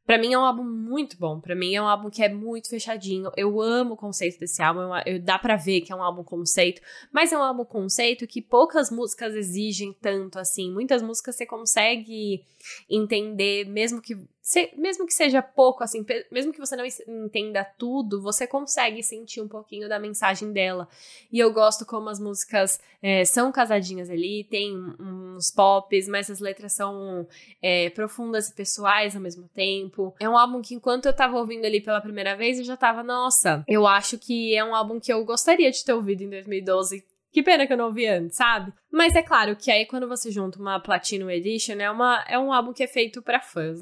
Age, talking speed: 10-29, 200 wpm